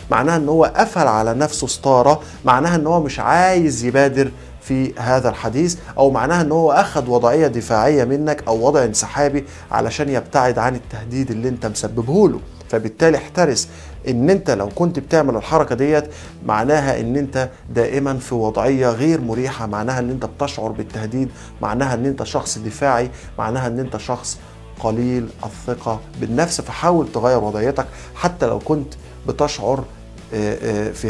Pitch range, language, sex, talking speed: 110-145 Hz, Arabic, male, 150 wpm